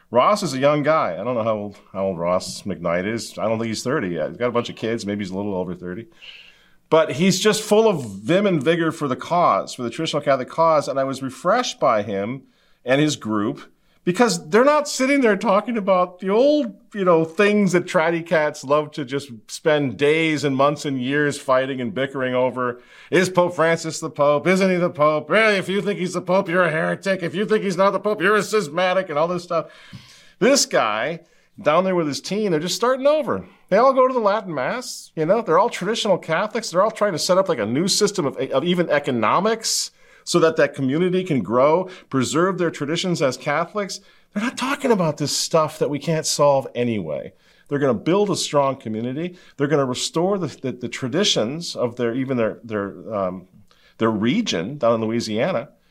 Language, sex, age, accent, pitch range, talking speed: English, male, 40-59, American, 130-185 Hz, 220 wpm